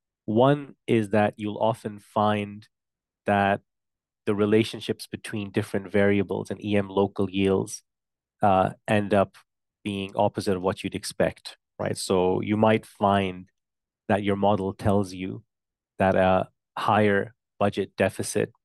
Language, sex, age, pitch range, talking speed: English, male, 30-49, 100-110 Hz, 130 wpm